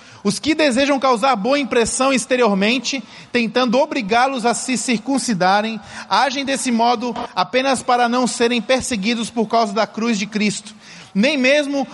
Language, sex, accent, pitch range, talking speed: Portuguese, male, Brazilian, 215-255 Hz, 140 wpm